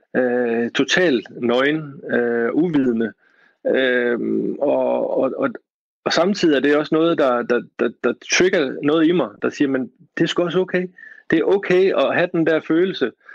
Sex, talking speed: male, 175 wpm